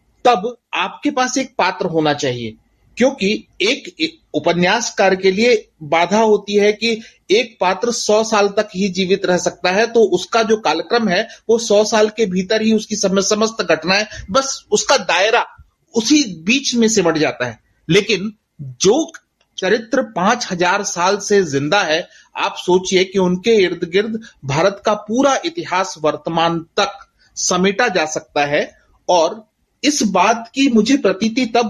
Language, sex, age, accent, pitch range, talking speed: Hindi, male, 30-49, native, 175-230 Hz, 155 wpm